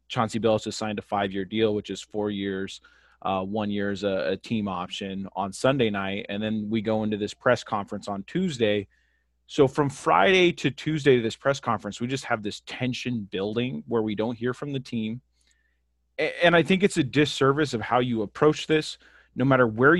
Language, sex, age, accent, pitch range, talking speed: English, male, 30-49, American, 105-135 Hz, 205 wpm